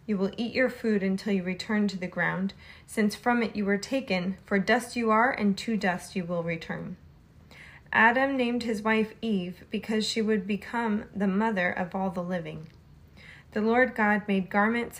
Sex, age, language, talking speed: female, 20-39, English, 190 wpm